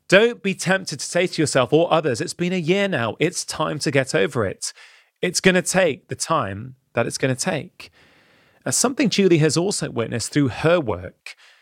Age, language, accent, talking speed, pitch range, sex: 30-49, English, British, 200 wpm, 120-155 Hz, male